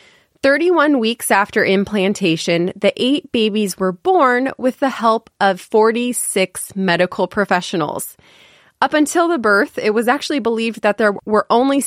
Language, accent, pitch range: English, American, 190-265 Hz